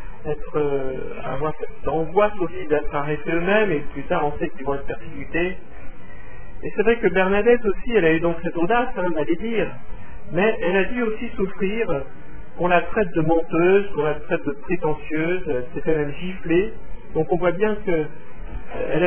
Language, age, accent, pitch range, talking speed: French, 50-69, French, 155-195 Hz, 170 wpm